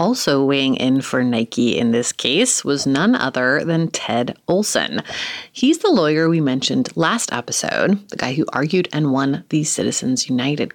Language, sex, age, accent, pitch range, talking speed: English, female, 30-49, American, 140-200 Hz, 165 wpm